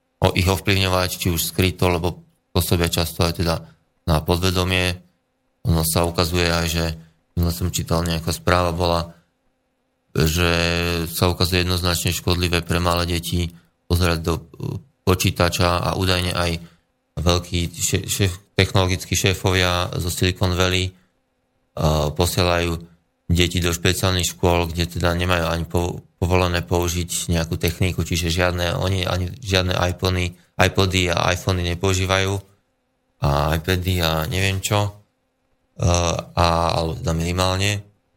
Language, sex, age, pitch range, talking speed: Slovak, male, 20-39, 85-95 Hz, 120 wpm